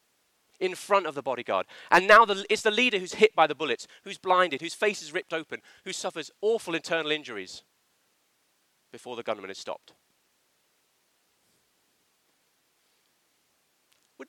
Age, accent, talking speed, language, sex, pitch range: 40-59, British, 140 wpm, English, male, 165-230 Hz